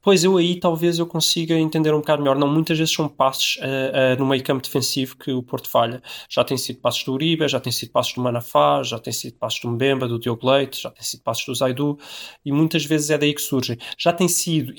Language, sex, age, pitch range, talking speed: Portuguese, male, 20-39, 130-160 Hz, 250 wpm